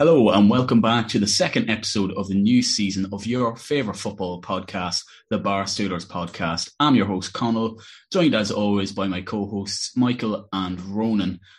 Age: 20-39